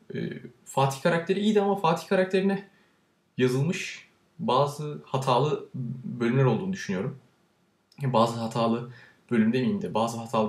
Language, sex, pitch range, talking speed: Turkish, male, 130-185 Hz, 110 wpm